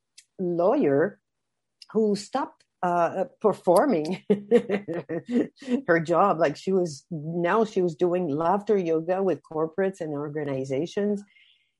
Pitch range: 160-210 Hz